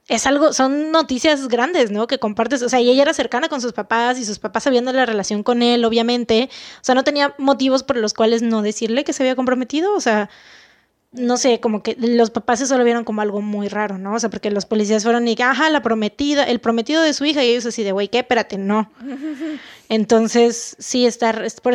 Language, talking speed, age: Spanish, 235 wpm, 20-39